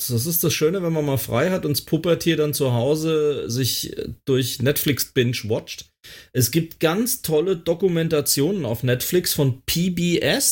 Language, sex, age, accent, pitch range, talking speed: German, male, 30-49, German, 135-175 Hz, 160 wpm